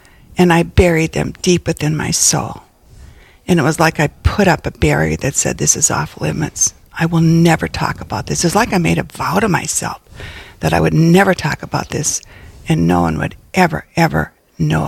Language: English